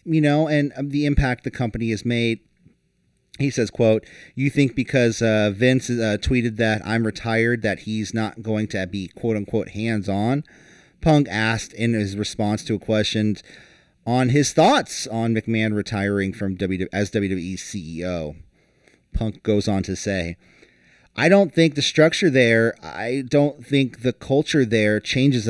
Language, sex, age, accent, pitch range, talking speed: English, male, 30-49, American, 105-140 Hz, 160 wpm